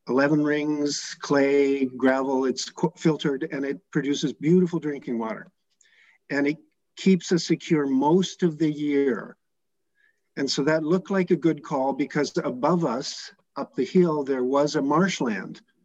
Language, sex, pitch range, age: English, male, 130-175 Hz, 50-69